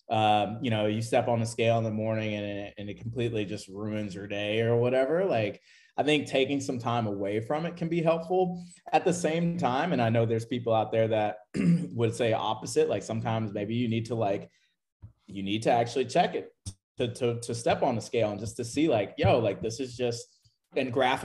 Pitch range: 110-140 Hz